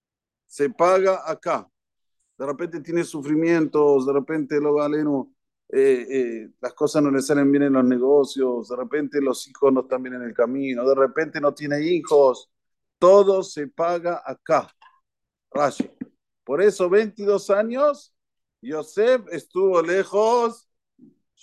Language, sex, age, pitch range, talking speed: Spanish, male, 50-69, 145-190 Hz, 135 wpm